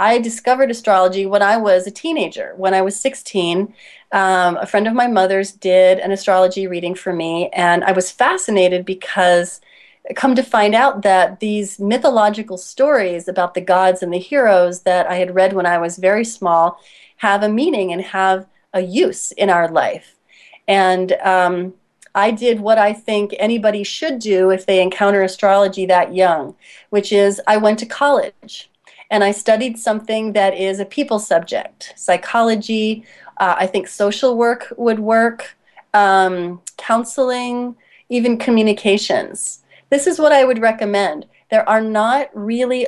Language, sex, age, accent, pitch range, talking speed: English, female, 30-49, American, 185-230 Hz, 160 wpm